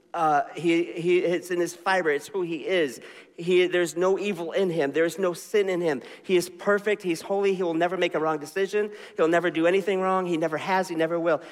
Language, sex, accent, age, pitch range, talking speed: English, male, American, 40-59, 155-185 Hz, 235 wpm